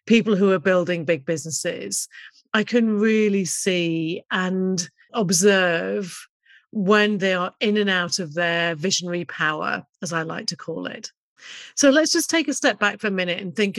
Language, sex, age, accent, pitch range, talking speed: English, female, 40-59, British, 180-215 Hz, 175 wpm